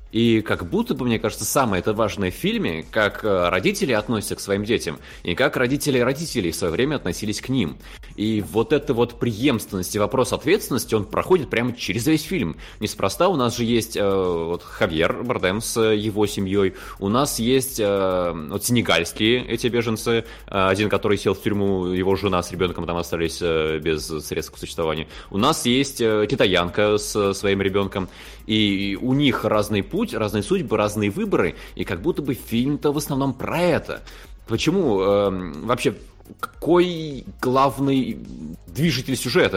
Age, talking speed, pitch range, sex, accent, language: 20-39, 160 wpm, 95-125 Hz, male, native, Russian